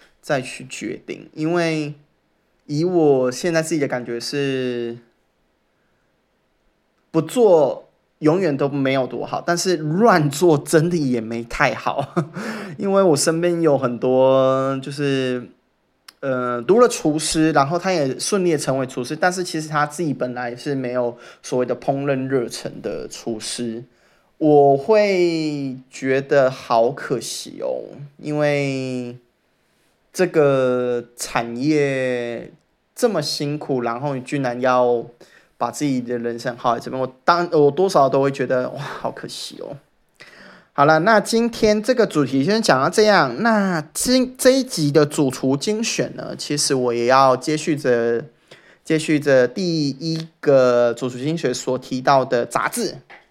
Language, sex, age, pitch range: English, male, 20-39, 125-165 Hz